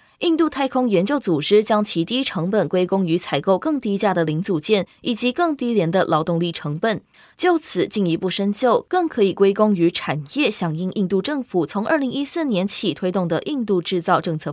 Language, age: Chinese, 20-39